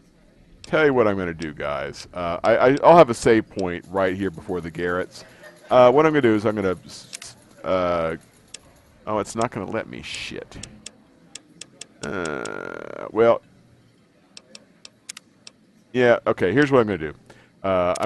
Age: 40-59